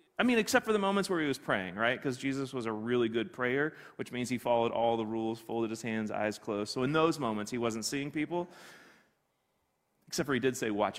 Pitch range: 140-220 Hz